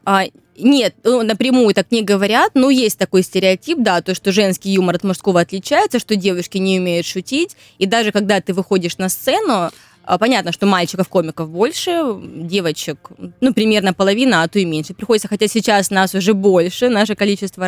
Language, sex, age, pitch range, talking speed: Russian, female, 20-39, 185-235 Hz, 175 wpm